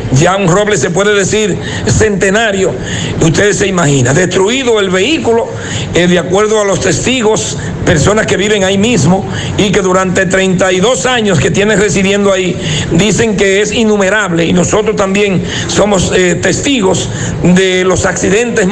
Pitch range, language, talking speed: 175-210 Hz, Spanish, 145 wpm